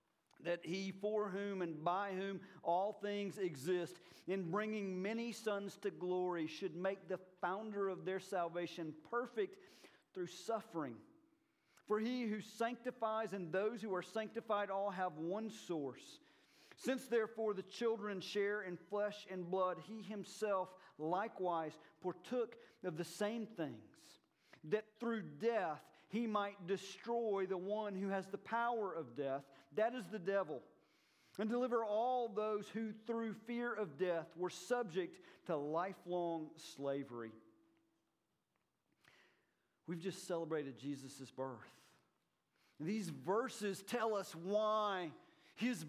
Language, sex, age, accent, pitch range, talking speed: English, male, 40-59, American, 165-215 Hz, 130 wpm